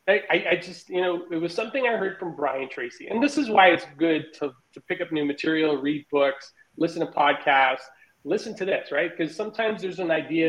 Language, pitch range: English, 140-180 Hz